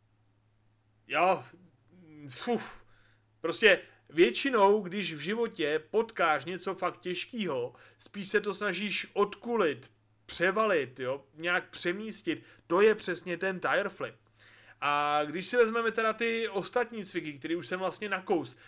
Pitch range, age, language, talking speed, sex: 150-200 Hz, 30-49, Czech, 125 wpm, male